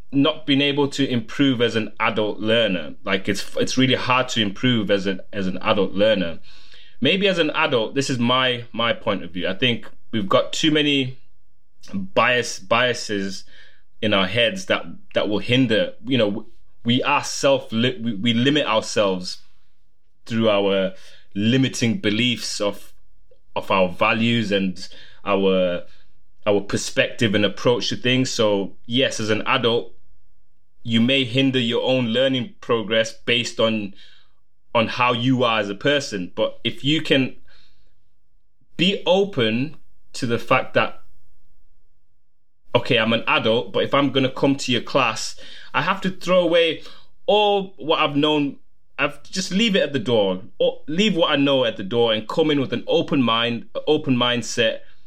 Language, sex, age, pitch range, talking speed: English, male, 20-39, 110-145 Hz, 160 wpm